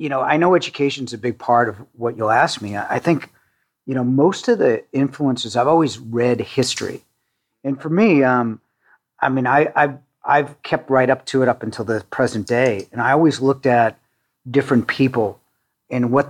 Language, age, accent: English, 40-59, American